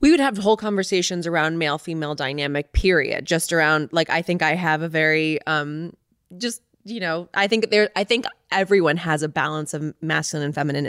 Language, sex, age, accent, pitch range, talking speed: English, female, 20-39, American, 155-205 Hz, 200 wpm